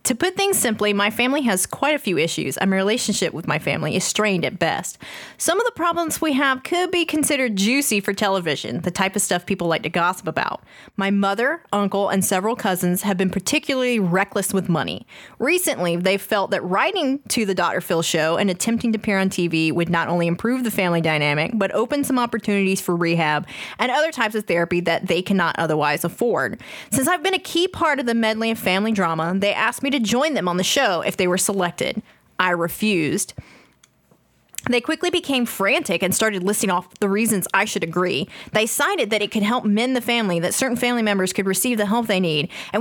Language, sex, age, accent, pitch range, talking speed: English, female, 20-39, American, 185-245 Hz, 215 wpm